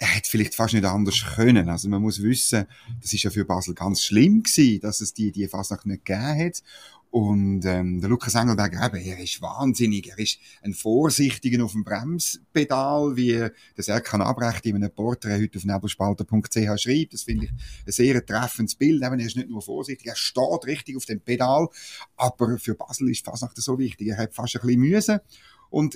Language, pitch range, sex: German, 110-145 Hz, male